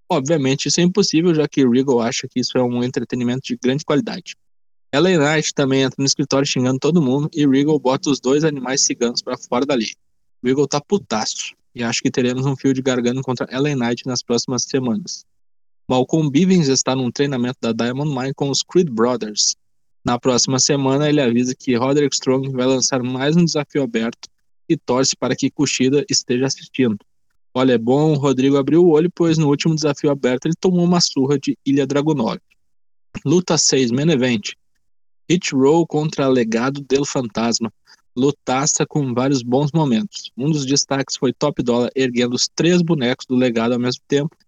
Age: 20-39